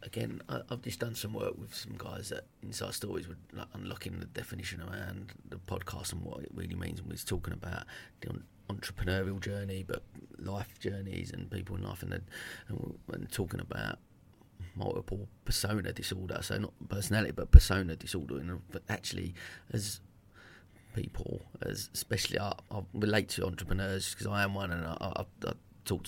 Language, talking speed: English, 175 wpm